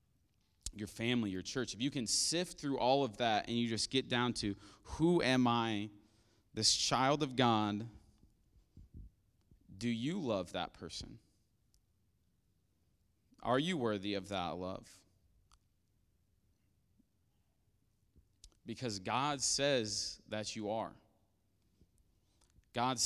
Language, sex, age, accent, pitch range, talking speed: English, male, 30-49, American, 100-130 Hz, 110 wpm